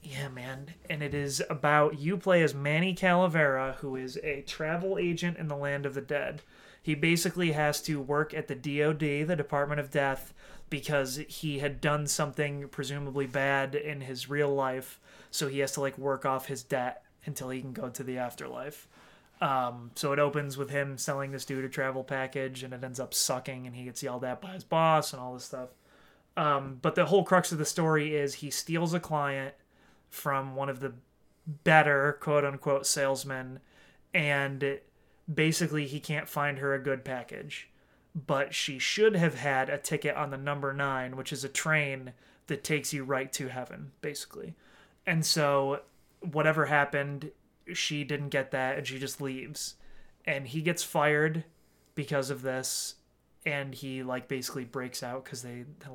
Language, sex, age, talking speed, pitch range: English, male, 30-49, 180 wpm, 135-155 Hz